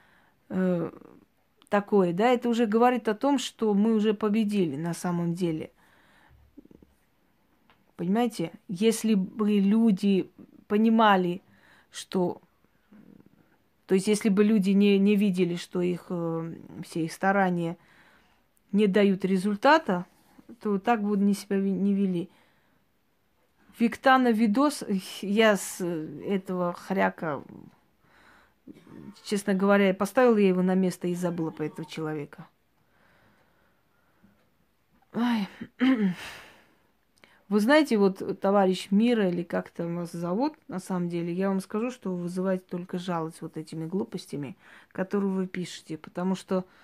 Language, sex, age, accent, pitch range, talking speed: Russian, female, 20-39, native, 180-210 Hz, 115 wpm